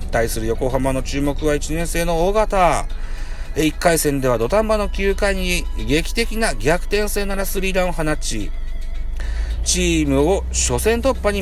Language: Japanese